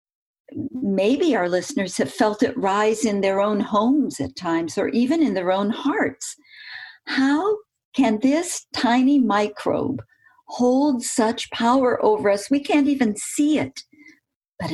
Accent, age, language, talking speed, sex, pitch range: American, 50-69, English, 145 wpm, female, 200-275 Hz